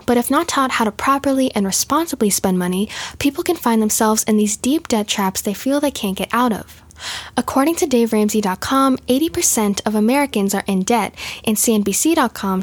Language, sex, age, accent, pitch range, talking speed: English, female, 10-29, American, 205-270 Hz, 180 wpm